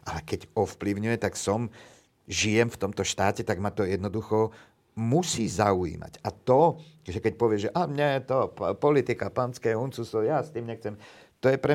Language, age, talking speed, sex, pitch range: Slovak, 50-69, 180 wpm, male, 100-130 Hz